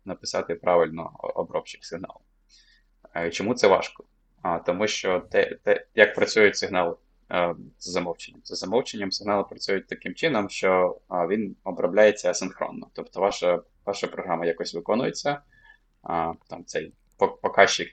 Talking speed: 125 wpm